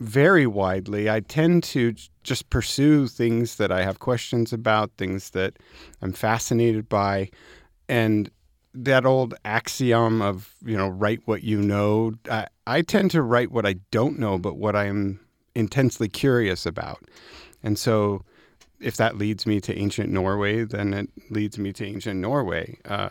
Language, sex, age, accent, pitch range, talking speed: English, male, 40-59, American, 100-115 Hz, 160 wpm